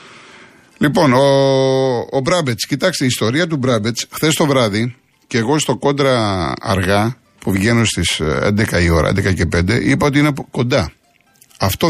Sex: male